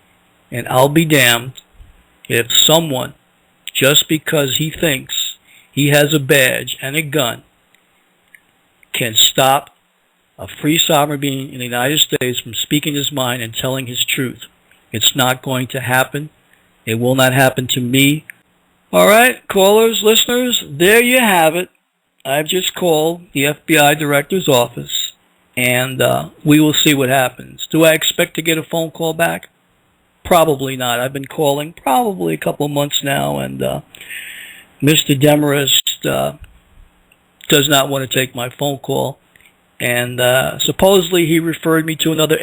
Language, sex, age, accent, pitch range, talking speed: English, male, 50-69, American, 125-155 Hz, 155 wpm